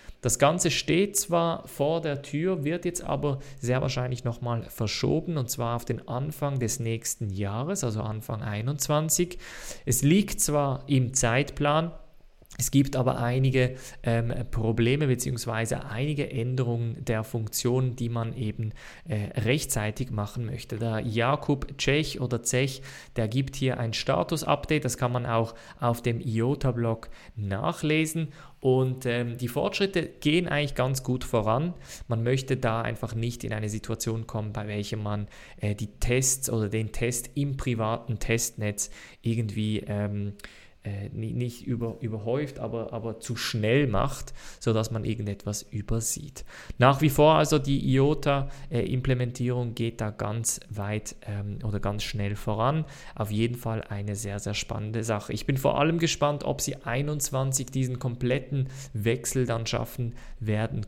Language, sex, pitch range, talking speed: German, male, 110-140 Hz, 145 wpm